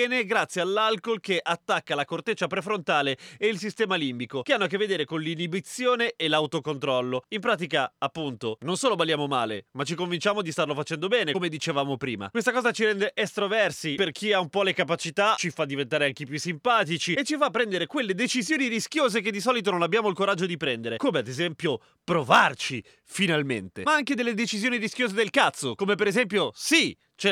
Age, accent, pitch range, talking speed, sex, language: 30-49, native, 150-210 Hz, 195 wpm, male, Italian